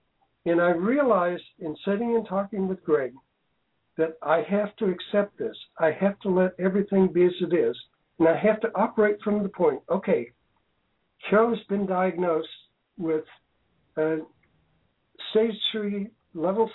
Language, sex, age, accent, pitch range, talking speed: English, male, 60-79, American, 165-210 Hz, 150 wpm